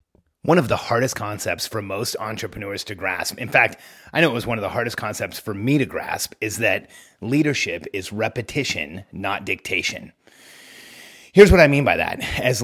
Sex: male